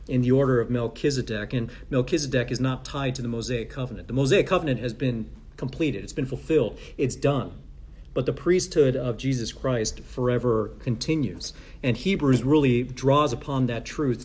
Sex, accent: male, American